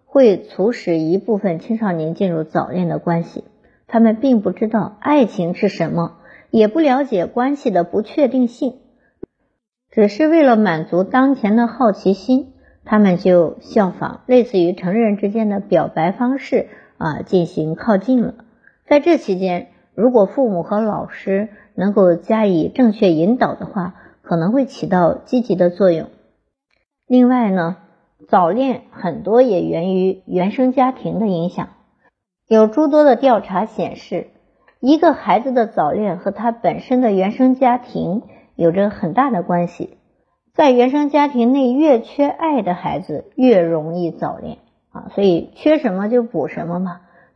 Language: Chinese